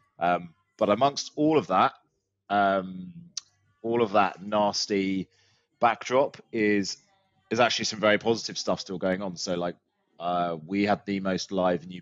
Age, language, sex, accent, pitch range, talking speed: 20-39, English, male, British, 85-100 Hz, 155 wpm